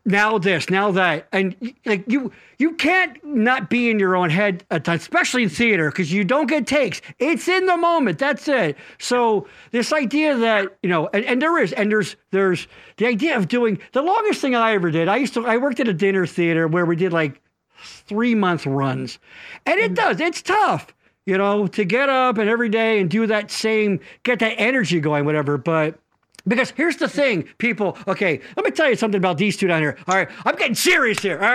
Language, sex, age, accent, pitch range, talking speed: English, male, 50-69, American, 185-255 Hz, 215 wpm